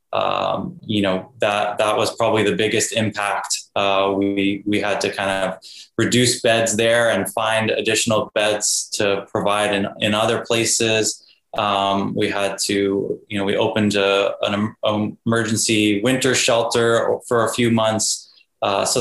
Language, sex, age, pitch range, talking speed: English, male, 20-39, 100-115 Hz, 160 wpm